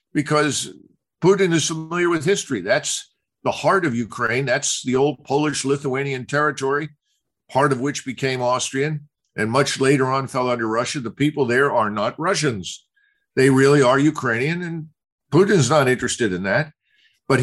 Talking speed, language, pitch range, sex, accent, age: 160 wpm, English, 130-155 Hz, male, American, 50-69